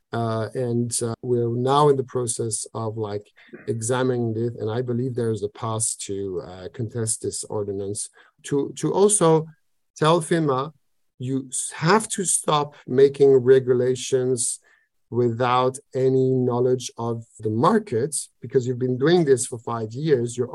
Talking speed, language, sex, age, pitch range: 145 wpm, English, male, 50-69, 120-140 Hz